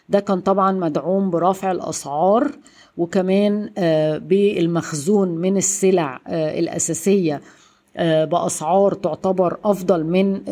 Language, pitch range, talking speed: Arabic, 165-195 Hz, 85 wpm